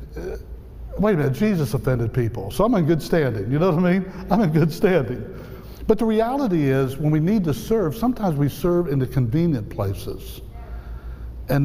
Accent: American